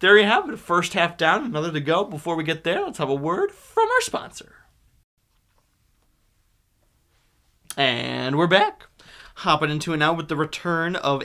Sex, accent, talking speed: male, American, 170 wpm